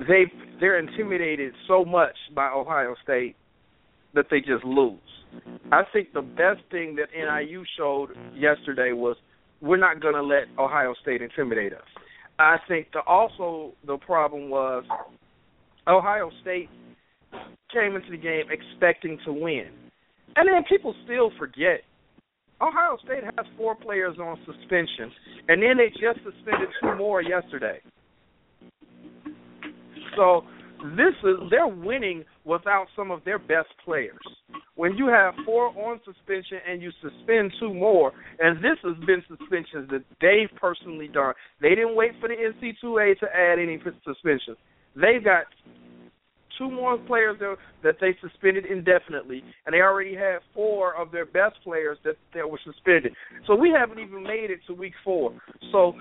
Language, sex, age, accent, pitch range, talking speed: English, male, 50-69, American, 150-210 Hz, 150 wpm